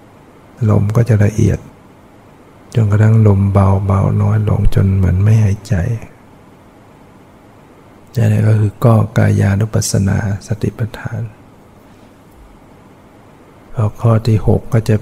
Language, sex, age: Thai, male, 60-79